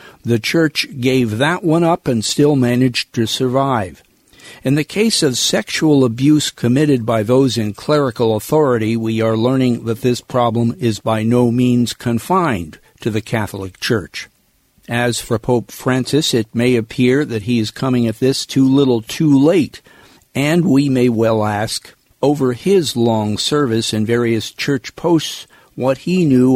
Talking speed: 160 wpm